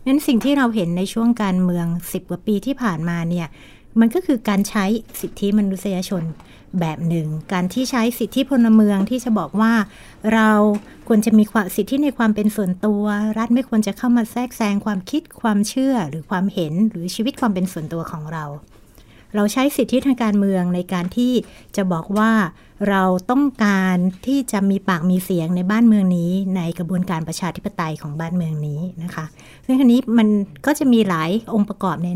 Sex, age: female, 60-79